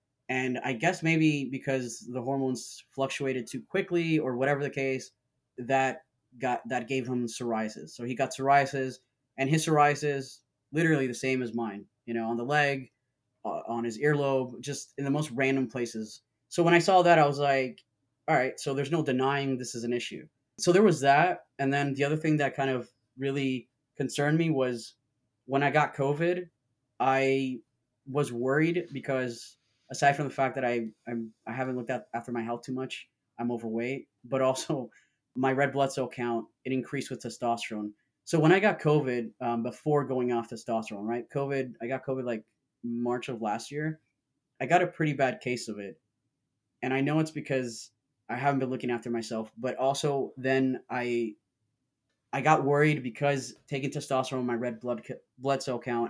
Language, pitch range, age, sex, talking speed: English, 120-140 Hz, 20-39, male, 185 wpm